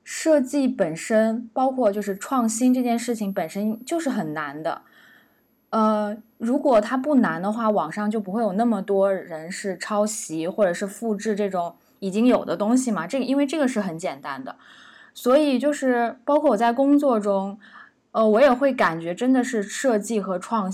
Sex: female